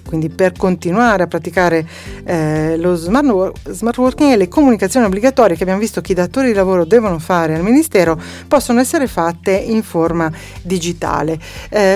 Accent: native